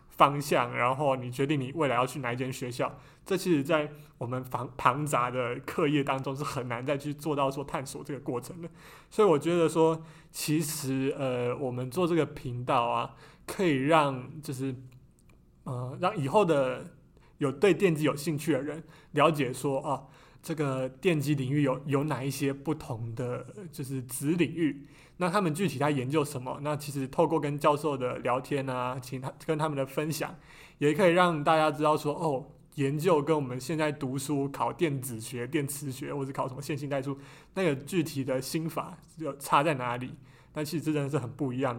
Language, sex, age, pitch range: Chinese, male, 20-39, 130-155 Hz